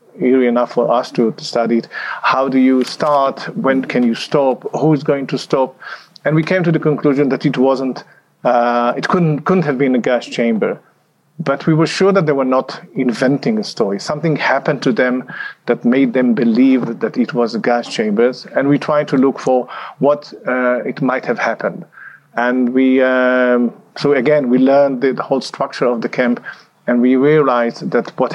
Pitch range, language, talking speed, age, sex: 125-150 Hz, English, 195 wpm, 40-59, male